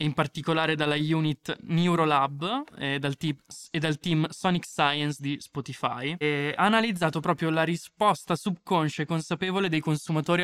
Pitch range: 145-175 Hz